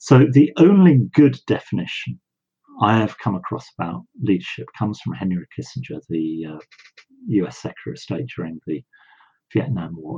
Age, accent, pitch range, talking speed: 50-69, British, 85-130 Hz, 145 wpm